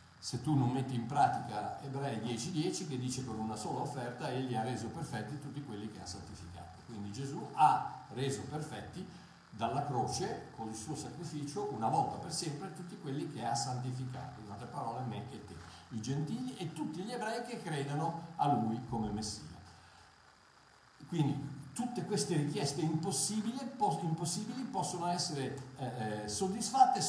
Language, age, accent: Italian, 50-69, native